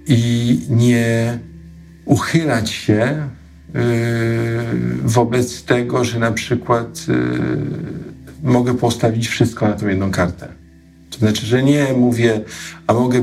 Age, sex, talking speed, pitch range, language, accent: 50-69, male, 115 wpm, 100-120 Hz, Polish, native